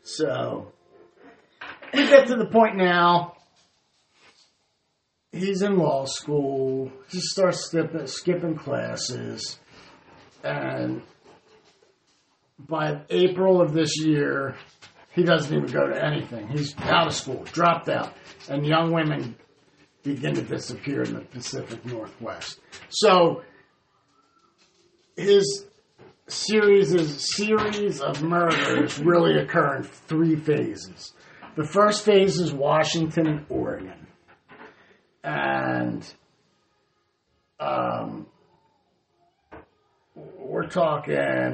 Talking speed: 100 wpm